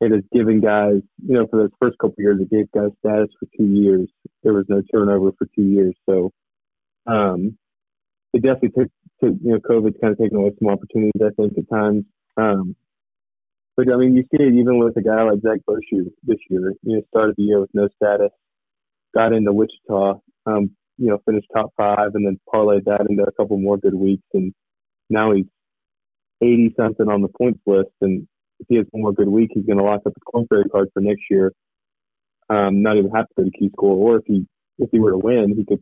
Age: 20-39